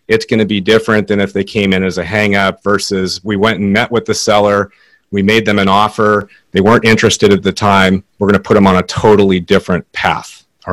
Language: English